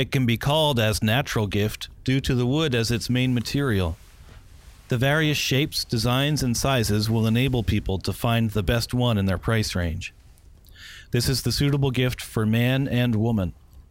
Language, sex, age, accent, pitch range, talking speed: English, male, 40-59, American, 95-135 Hz, 180 wpm